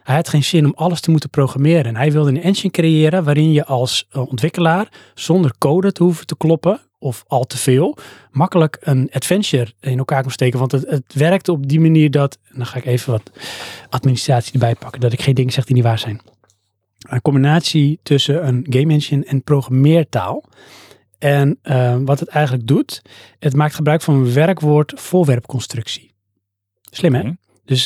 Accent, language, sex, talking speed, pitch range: Dutch, Dutch, male, 185 wpm, 125-150 Hz